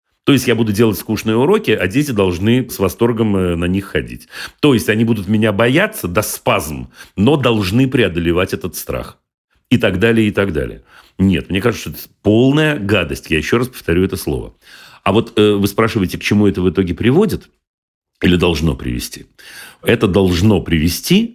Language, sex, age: Russian, male, 40-59